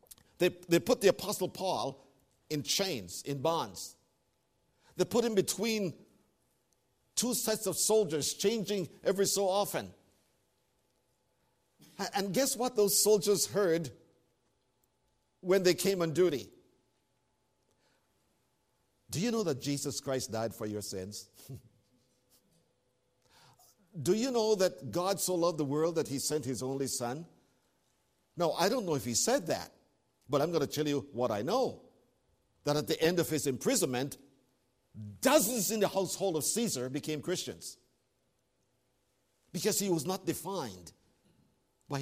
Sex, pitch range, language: male, 125-200 Hz, English